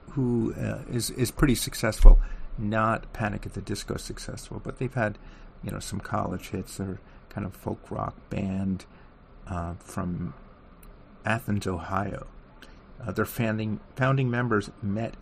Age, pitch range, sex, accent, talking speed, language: 50-69, 90-110 Hz, male, American, 140 wpm, English